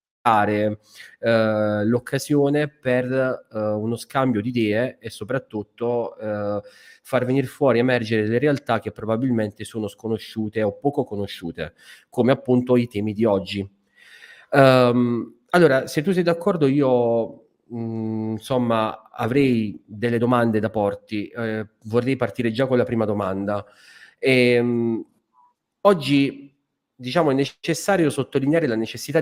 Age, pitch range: 30-49, 110-140 Hz